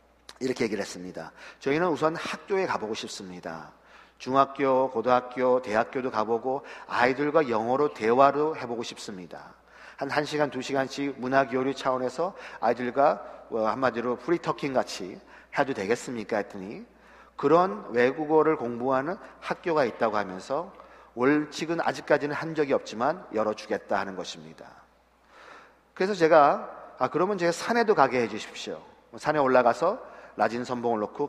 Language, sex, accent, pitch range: Korean, male, native, 120-150 Hz